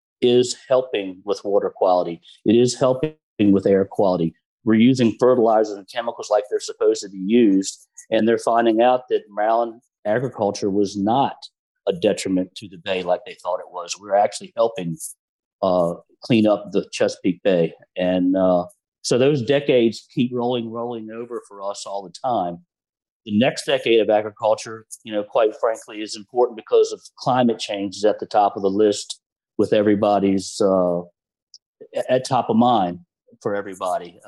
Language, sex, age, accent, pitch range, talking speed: English, male, 40-59, American, 100-125 Hz, 165 wpm